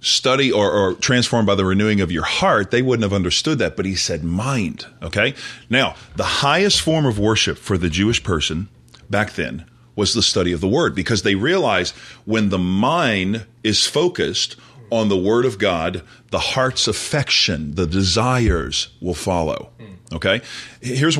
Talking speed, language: 170 wpm, English